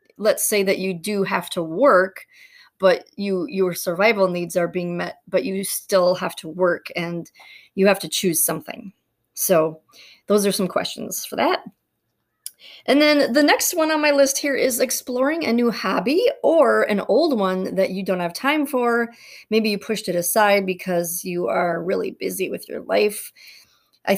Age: 30-49